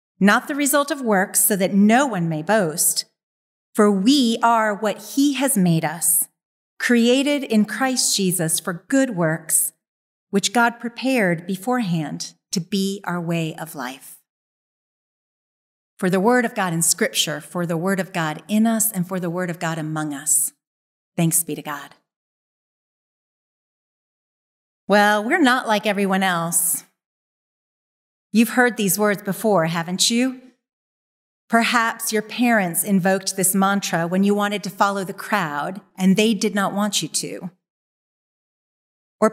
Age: 40-59